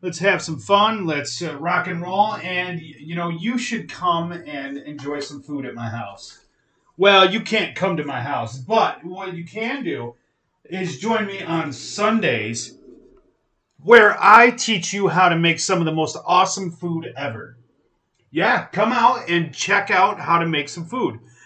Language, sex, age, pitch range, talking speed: English, male, 30-49, 145-190 Hz, 180 wpm